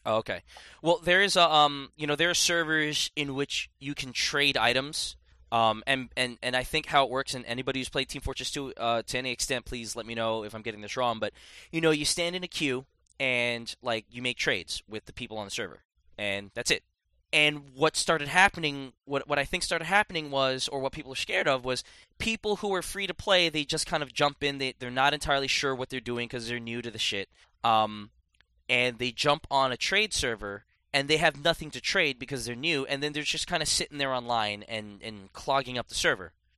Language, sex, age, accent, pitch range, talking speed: English, male, 20-39, American, 125-150 Hz, 235 wpm